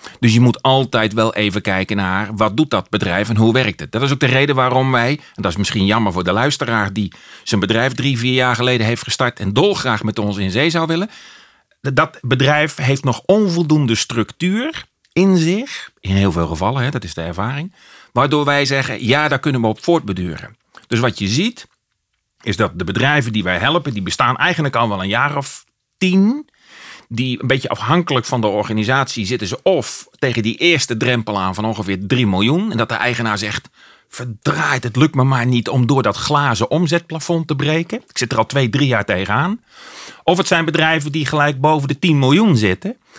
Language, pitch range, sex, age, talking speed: Dutch, 110-150 Hz, male, 40-59, 205 wpm